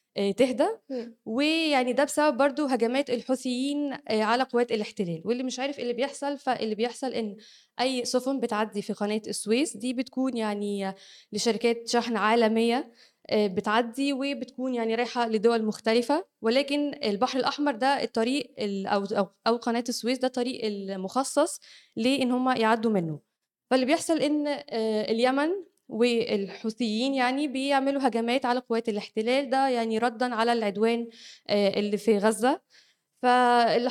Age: 20-39